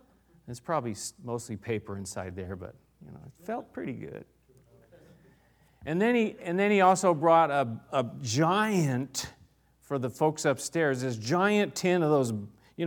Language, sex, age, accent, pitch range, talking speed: English, male, 40-59, American, 115-175 Hz, 160 wpm